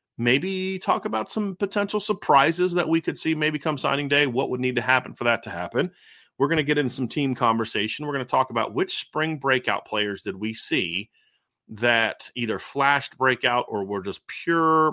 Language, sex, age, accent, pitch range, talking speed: English, male, 30-49, American, 115-150 Hz, 205 wpm